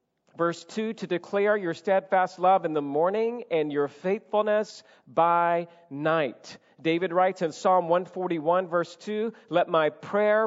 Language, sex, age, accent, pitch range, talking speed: English, male, 40-59, American, 155-195 Hz, 145 wpm